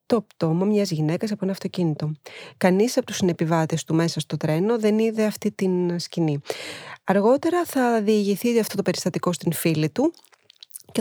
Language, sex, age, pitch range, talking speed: English, female, 20-39, 170-210 Hz, 160 wpm